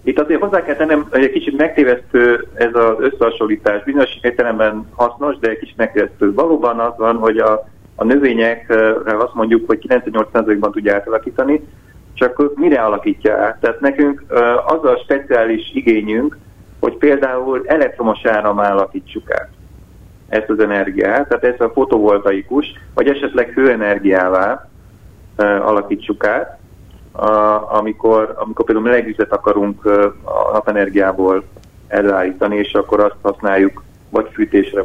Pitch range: 100-125 Hz